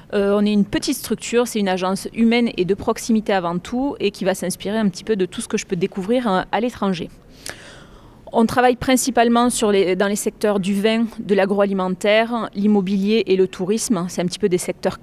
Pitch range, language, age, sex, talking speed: 190-225 Hz, French, 30-49, female, 210 wpm